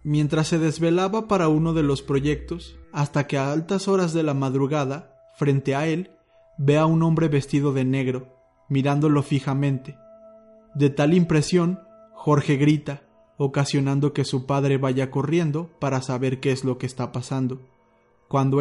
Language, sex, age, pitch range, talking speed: Spanish, male, 30-49, 130-155 Hz, 155 wpm